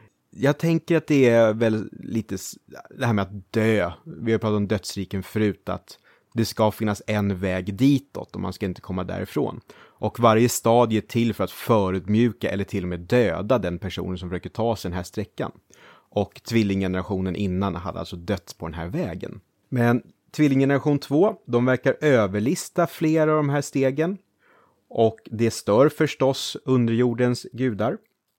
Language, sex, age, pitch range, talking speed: Swedish, male, 30-49, 100-125 Hz, 170 wpm